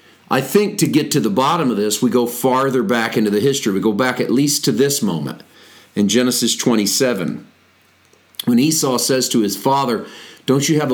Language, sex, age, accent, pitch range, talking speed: English, male, 40-59, American, 110-135 Hz, 195 wpm